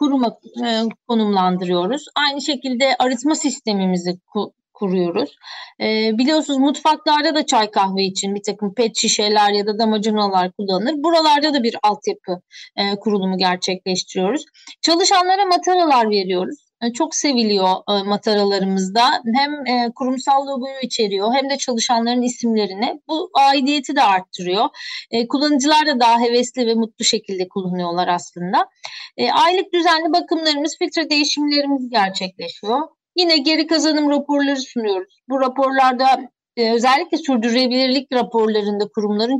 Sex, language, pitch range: female, Turkish, 210-300 Hz